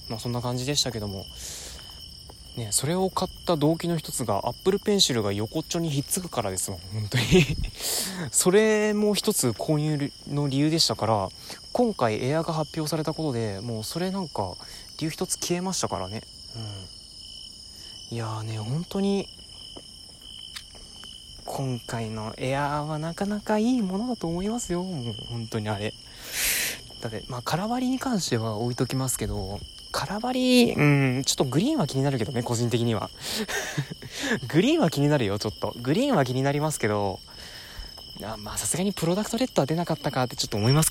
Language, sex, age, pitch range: Japanese, male, 20-39, 110-170 Hz